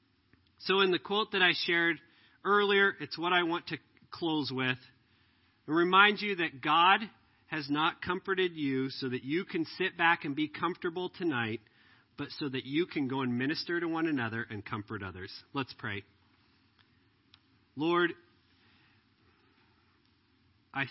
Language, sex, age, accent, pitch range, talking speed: English, male, 40-59, American, 115-160 Hz, 150 wpm